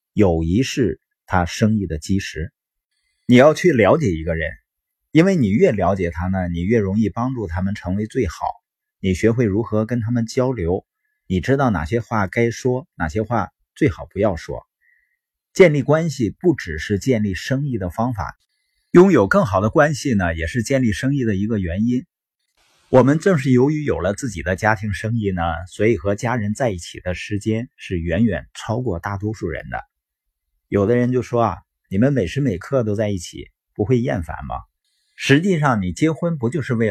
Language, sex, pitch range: Chinese, male, 95-130 Hz